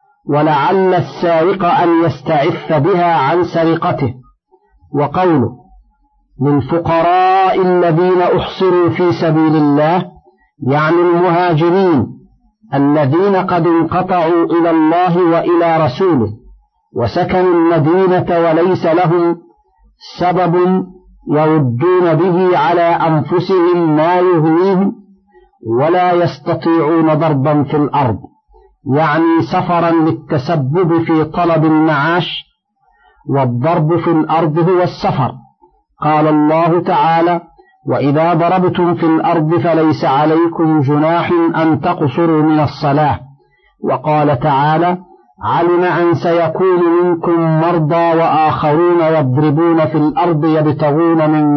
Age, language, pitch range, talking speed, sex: 50-69, Arabic, 155-180 Hz, 90 wpm, male